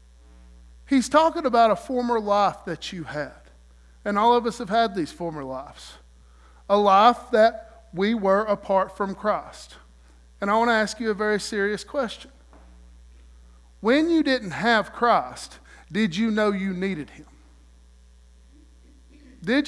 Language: English